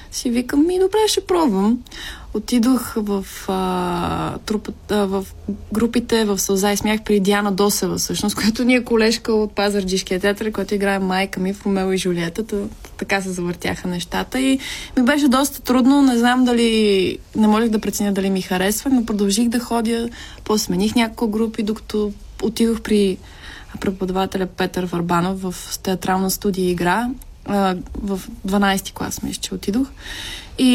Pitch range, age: 200-230 Hz, 20-39